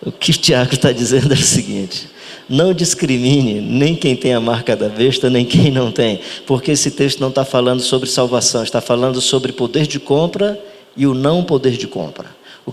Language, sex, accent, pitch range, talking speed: Portuguese, male, Brazilian, 125-150 Hz, 205 wpm